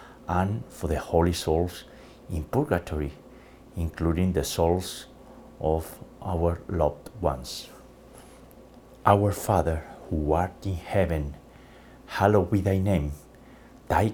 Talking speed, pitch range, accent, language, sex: 105 wpm, 85-95 Hz, Spanish, English, male